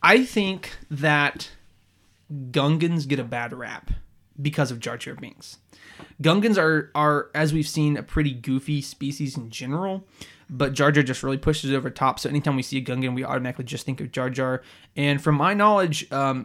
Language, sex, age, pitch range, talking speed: English, male, 20-39, 130-155 Hz, 190 wpm